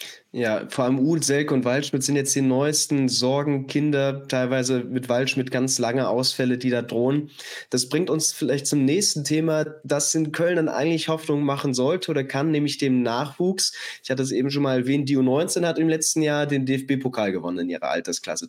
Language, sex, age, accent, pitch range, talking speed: German, male, 20-39, German, 130-155 Hz, 190 wpm